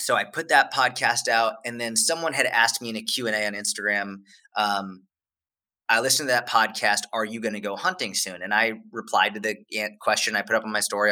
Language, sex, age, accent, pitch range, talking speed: English, male, 20-39, American, 105-125 Hz, 225 wpm